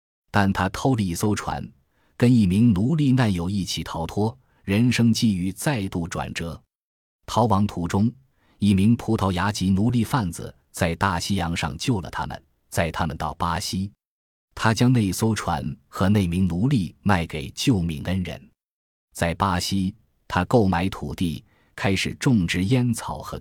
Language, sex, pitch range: Chinese, male, 85-110 Hz